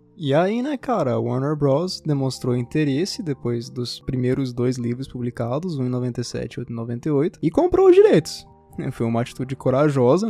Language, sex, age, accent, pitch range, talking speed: Portuguese, male, 20-39, Brazilian, 120-150 Hz, 170 wpm